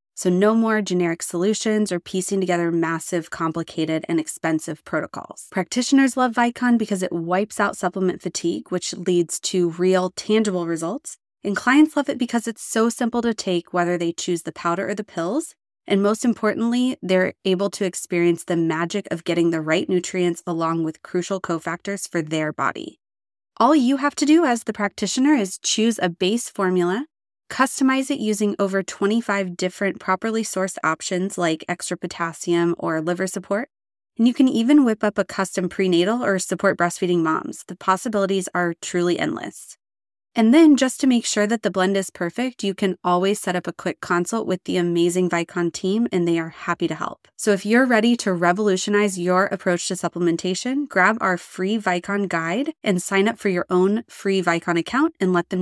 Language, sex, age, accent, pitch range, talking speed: English, female, 20-39, American, 175-220 Hz, 185 wpm